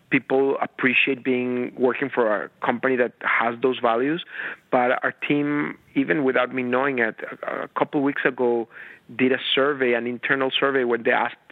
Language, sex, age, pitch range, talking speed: English, male, 40-59, 125-140 Hz, 165 wpm